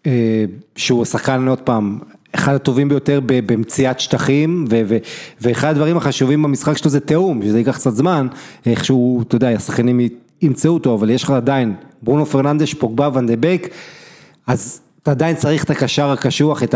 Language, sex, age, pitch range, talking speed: Hebrew, male, 30-49, 120-150 Hz, 155 wpm